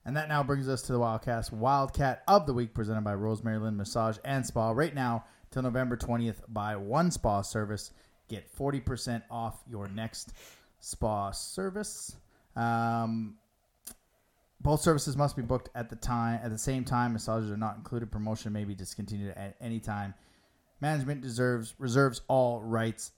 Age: 20-39